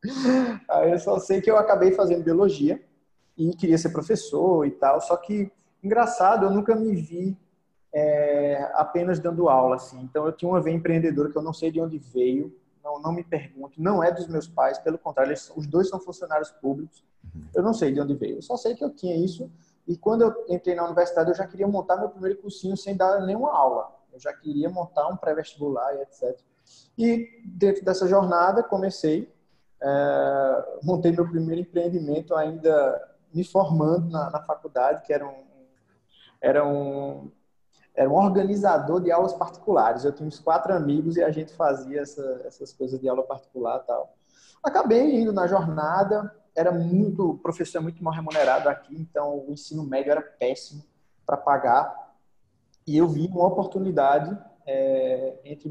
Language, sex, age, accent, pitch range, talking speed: Portuguese, male, 20-39, Brazilian, 145-190 Hz, 175 wpm